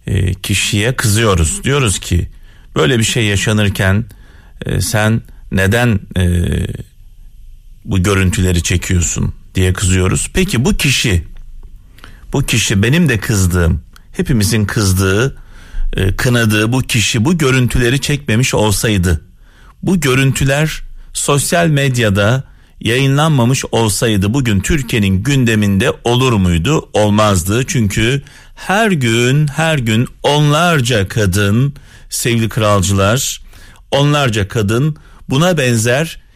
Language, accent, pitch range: Turkish, native, 100-140 Hz